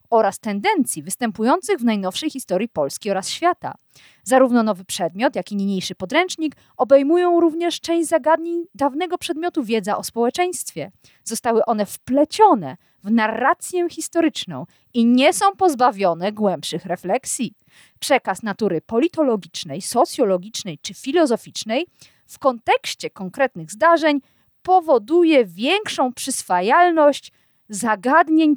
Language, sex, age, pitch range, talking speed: Polish, female, 40-59, 215-340 Hz, 105 wpm